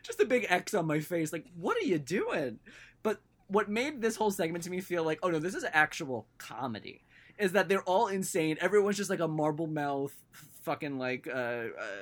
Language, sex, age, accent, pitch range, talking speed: English, male, 20-39, American, 155-220 Hz, 210 wpm